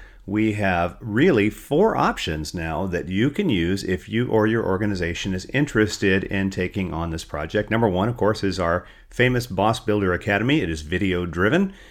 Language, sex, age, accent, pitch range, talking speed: English, male, 40-59, American, 85-110 Hz, 180 wpm